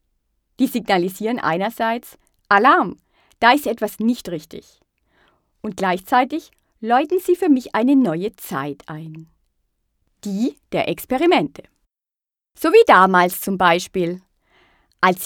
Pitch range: 180-245 Hz